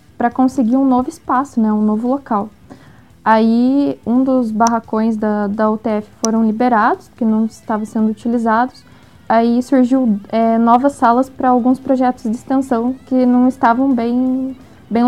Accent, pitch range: Brazilian, 220-255 Hz